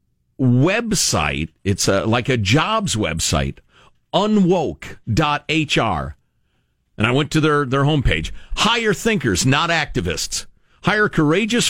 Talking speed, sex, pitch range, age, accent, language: 110 wpm, male, 115-175 Hz, 50-69, American, English